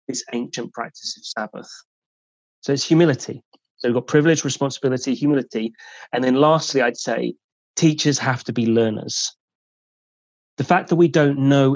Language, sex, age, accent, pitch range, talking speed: English, male, 30-49, British, 115-140 Hz, 155 wpm